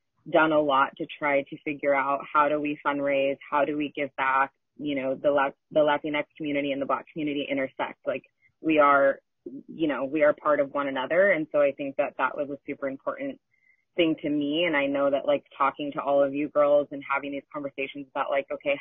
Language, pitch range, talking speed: English, 140-170 Hz, 225 wpm